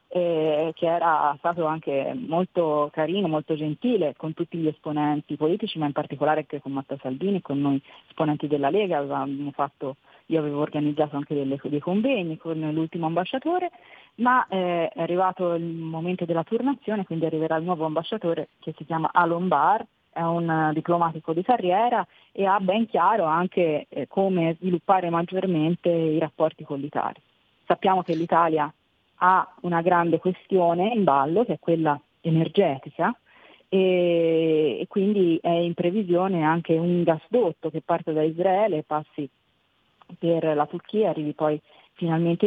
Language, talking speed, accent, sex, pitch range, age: Italian, 150 wpm, native, female, 155-180 Hz, 20-39